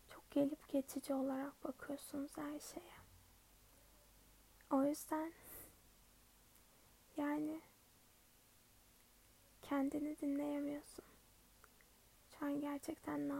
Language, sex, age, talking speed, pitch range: Turkish, female, 10-29, 65 wpm, 280-300 Hz